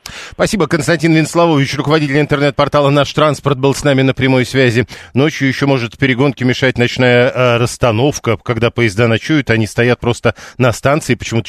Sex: male